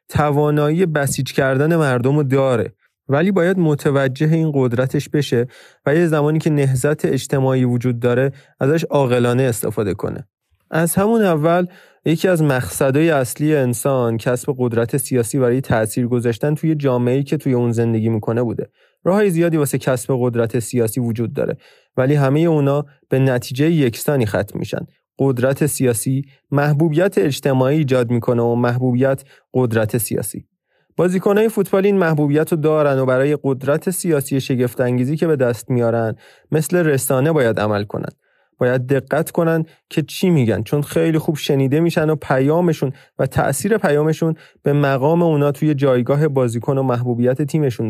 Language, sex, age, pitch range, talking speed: Persian, male, 30-49, 125-155 Hz, 150 wpm